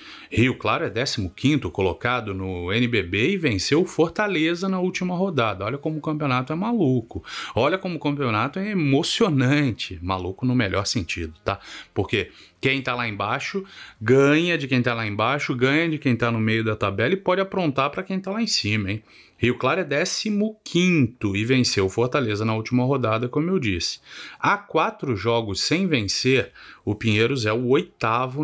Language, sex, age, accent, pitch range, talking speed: Portuguese, male, 30-49, Brazilian, 110-150 Hz, 175 wpm